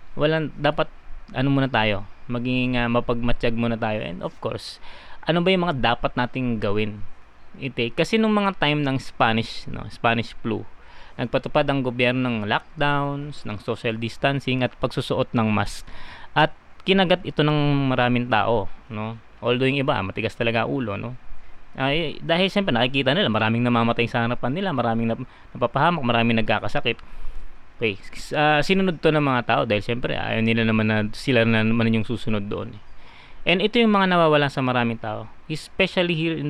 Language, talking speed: Filipino, 165 wpm